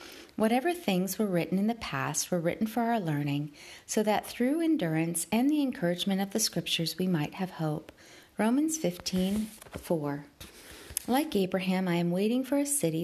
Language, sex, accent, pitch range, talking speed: English, female, American, 170-235 Hz, 165 wpm